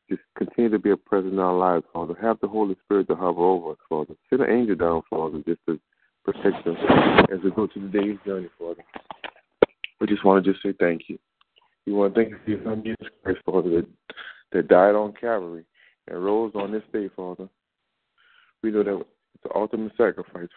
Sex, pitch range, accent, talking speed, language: male, 90-105 Hz, American, 205 wpm, English